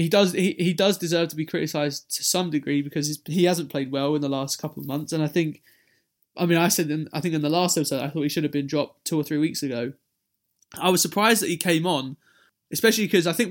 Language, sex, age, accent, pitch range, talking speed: English, male, 20-39, British, 150-185 Hz, 265 wpm